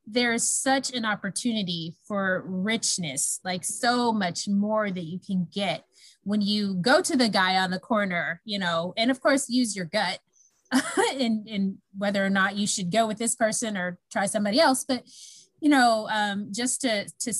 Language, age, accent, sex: English, 30-49, American, female